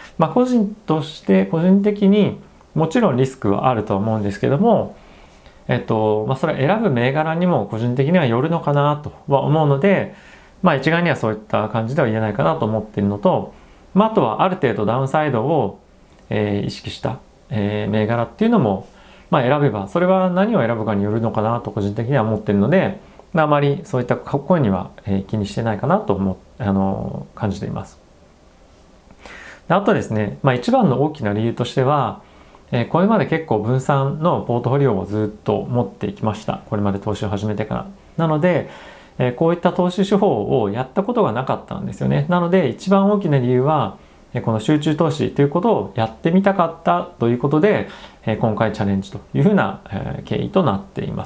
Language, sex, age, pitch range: Japanese, male, 40-59, 110-170 Hz